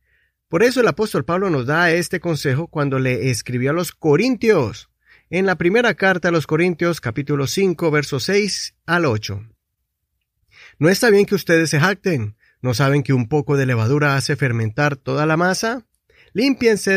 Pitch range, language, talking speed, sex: 140-195 Hz, Spanish, 170 wpm, male